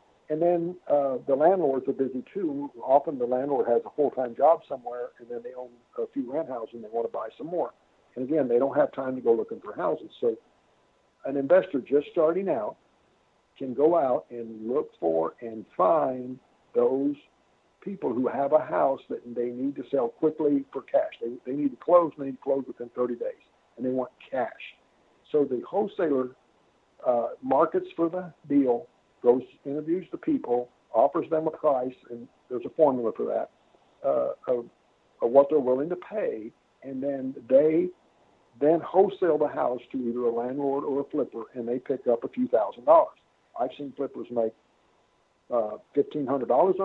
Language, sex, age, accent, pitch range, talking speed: English, male, 60-79, American, 125-180 Hz, 185 wpm